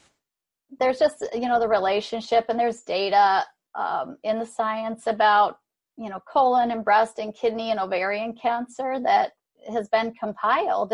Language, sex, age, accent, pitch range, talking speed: English, female, 40-59, American, 210-245 Hz, 155 wpm